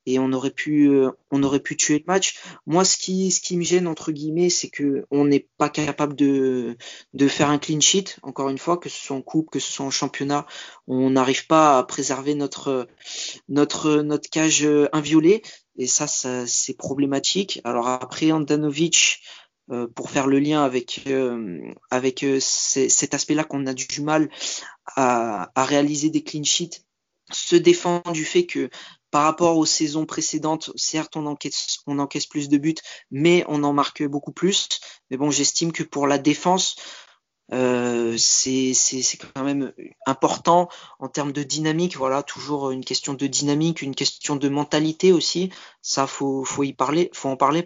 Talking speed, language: 170 wpm, French